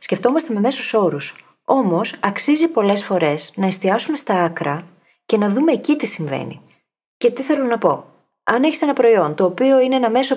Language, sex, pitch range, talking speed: Greek, female, 185-265 Hz, 185 wpm